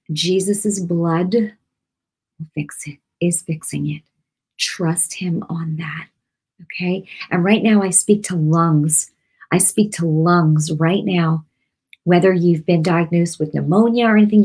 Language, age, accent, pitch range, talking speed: English, 40-59, American, 165-205 Hz, 140 wpm